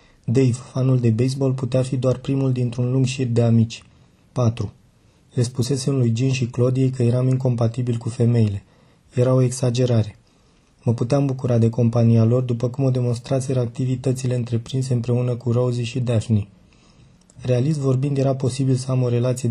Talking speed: 160 wpm